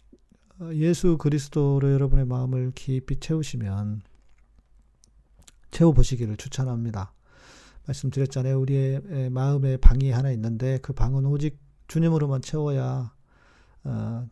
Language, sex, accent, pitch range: Korean, male, native, 120-150 Hz